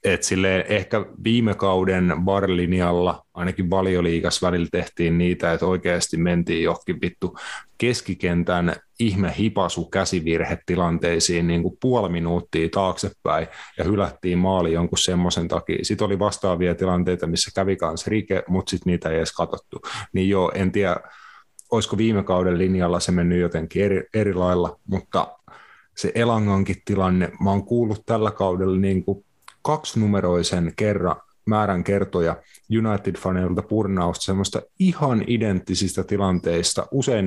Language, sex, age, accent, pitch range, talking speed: Finnish, male, 30-49, native, 90-110 Hz, 125 wpm